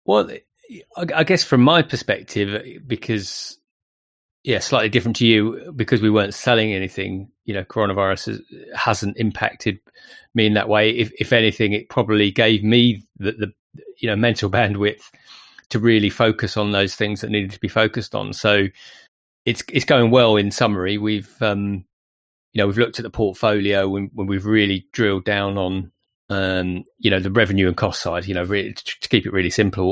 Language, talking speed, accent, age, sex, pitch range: English, 180 wpm, British, 30-49, male, 95-110 Hz